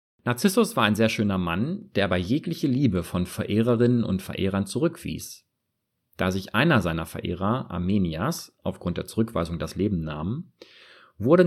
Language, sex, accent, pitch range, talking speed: German, male, German, 90-120 Hz, 145 wpm